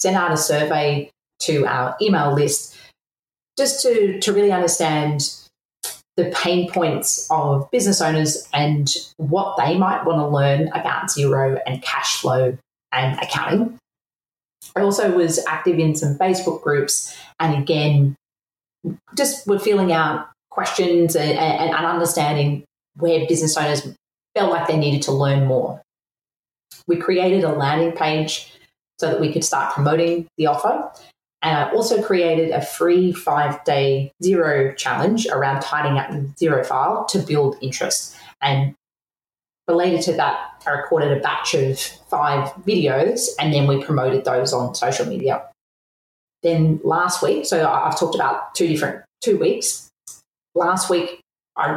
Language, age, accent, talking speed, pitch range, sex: English, 30-49, Australian, 145 wpm, 140-175 Hz, female